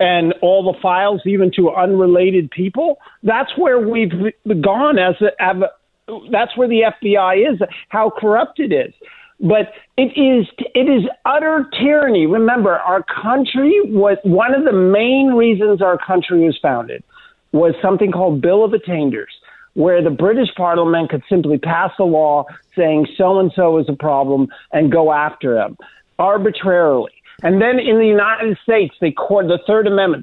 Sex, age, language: male, 50-69, English